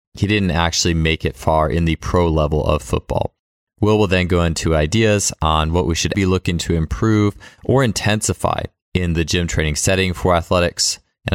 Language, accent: English, American